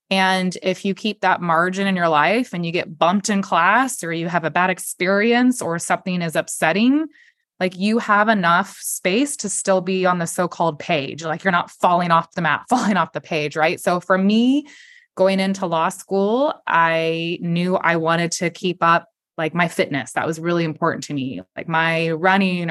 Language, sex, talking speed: English, female, 200 wpm